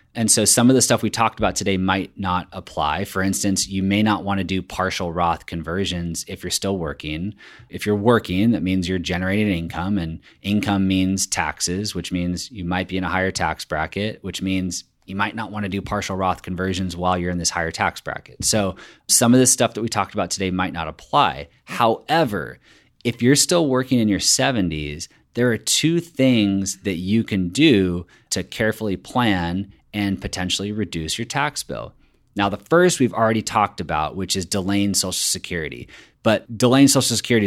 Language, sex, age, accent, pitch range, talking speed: English, male, 30-49, American, 90-110 Hz, 195 wpm